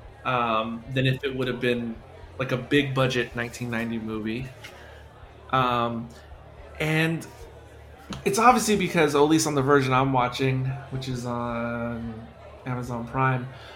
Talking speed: 130 wpm